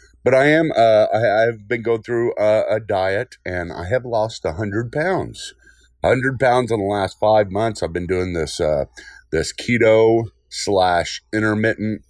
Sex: male